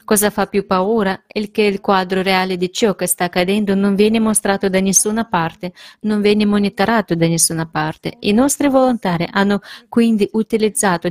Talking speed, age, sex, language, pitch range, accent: 175 wpm, 30-49, female, Italian, 180-215 Hz, native